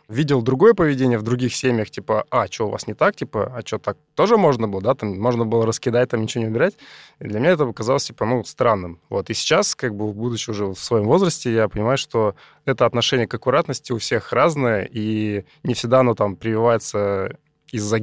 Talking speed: 215 wpm